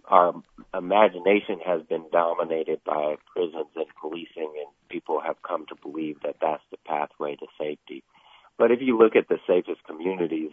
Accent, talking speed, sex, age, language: American, 165 wpm, male, 40-59, English